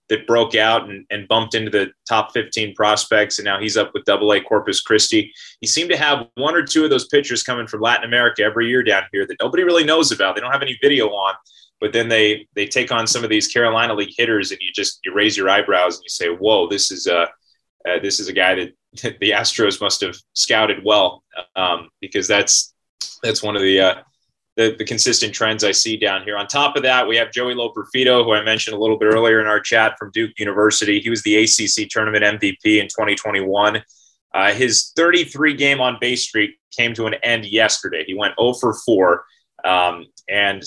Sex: male